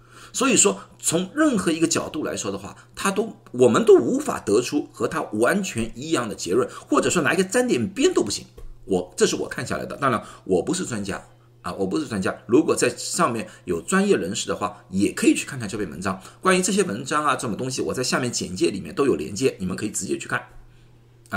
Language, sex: Chinese, male